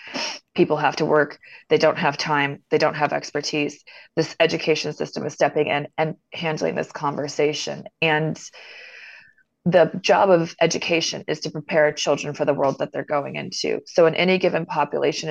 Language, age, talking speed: English, 20-39, 170 wpm